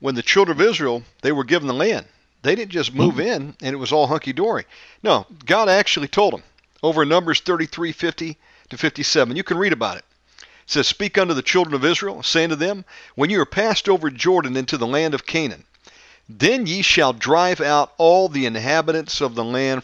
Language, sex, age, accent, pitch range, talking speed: English, male, 50-69, American, 135-175 Hz, 210 wpm